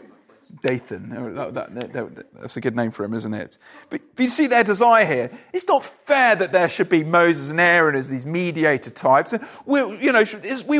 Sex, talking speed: male, 205 wpm